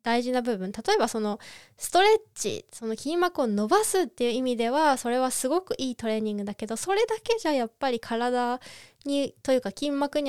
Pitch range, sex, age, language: 220-310 Hz, female, 20-39, Japanese